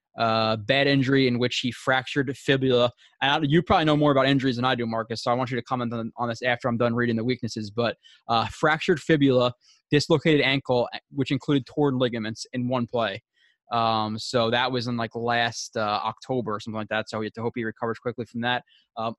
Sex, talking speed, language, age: male, 220 wpm, English, 20-39